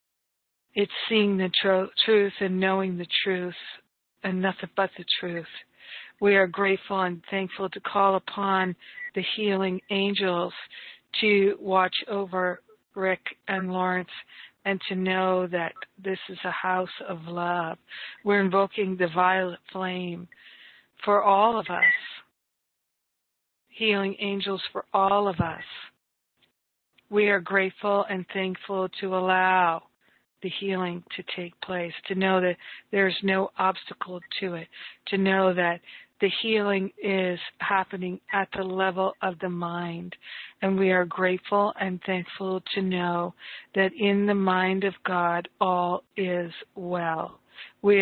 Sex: female